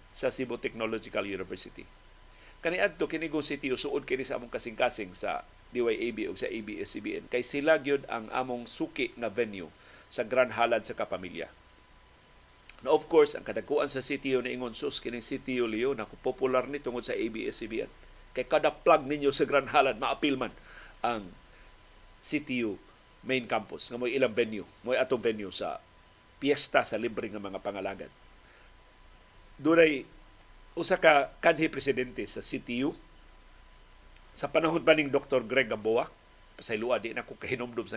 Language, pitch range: Filipino, 110-145 Hz